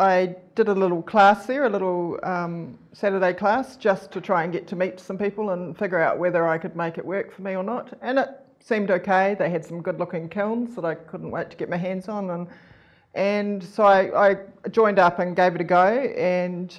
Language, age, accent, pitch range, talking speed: English, 40-59, Australian, 175-200 Hz, 230 wpm